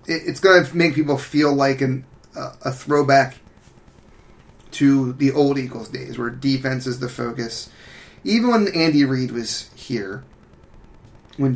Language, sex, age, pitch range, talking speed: English, male, 30-49, 115-140 Hz, 145 wpm